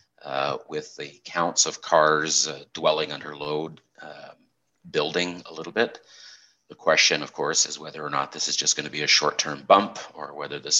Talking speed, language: 195 wpm, English